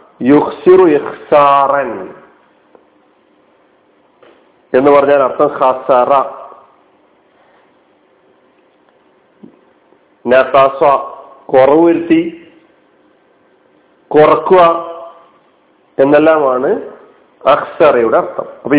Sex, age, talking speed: male, 50-69, 40 wpm